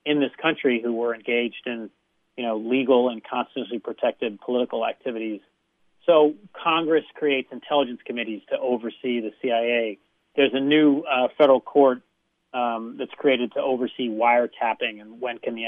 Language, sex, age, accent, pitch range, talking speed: English, male, 30-49, American, 120-145 Hz, 155 wpm